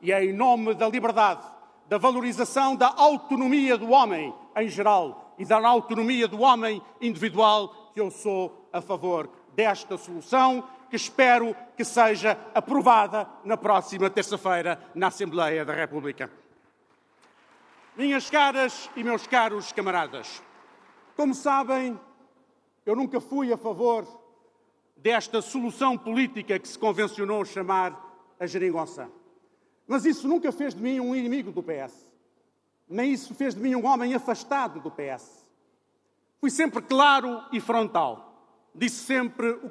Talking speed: 135 wpm